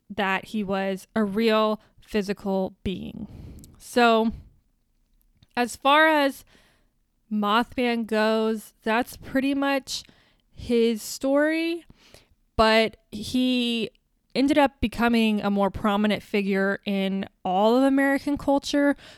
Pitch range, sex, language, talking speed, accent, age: 200-240 Hz, female, English, 100 wpm, American, 20-39